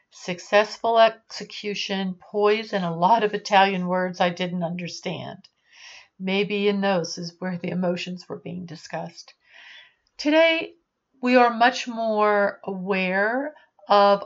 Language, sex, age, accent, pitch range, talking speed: English, female, 50-69, American, 190-240 Hz, 120 wpm